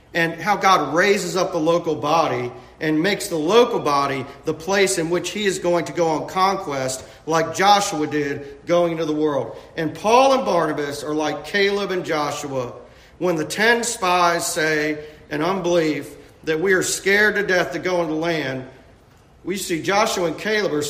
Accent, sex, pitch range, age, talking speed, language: American, male, 160-210 Hz, 40-59, 185 wpm, English